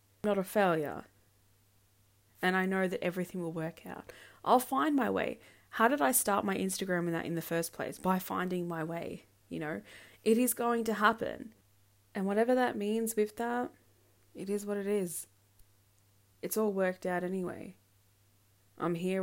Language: English